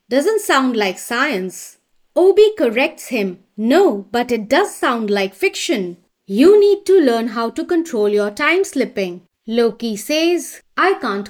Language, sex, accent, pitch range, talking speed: English, female, Indian, 215-335 Hz, 150 wpm